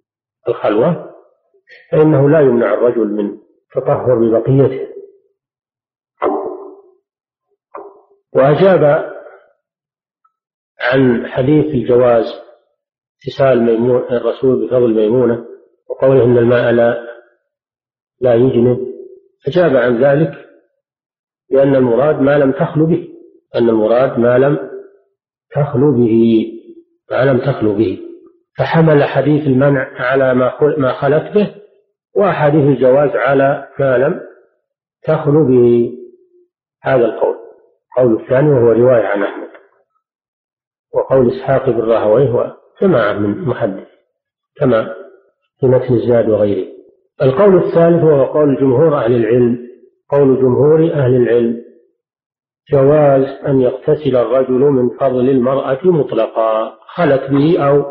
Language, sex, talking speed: Arabic, male, 100 wpm